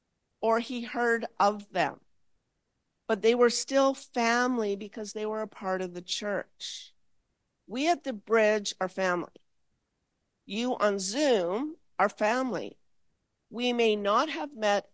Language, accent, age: English, American, 50-69